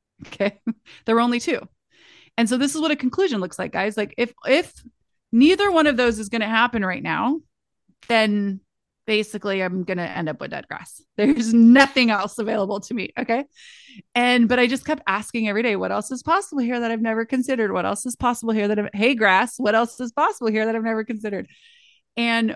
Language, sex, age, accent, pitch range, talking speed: English, female, 30-49, American, 195-250 Hz, 215 wpm